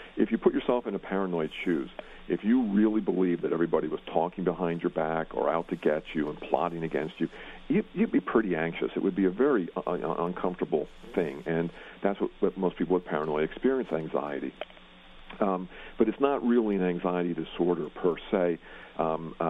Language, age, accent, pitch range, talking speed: English, 50-69, American, 80-100 Hz, 190 wpm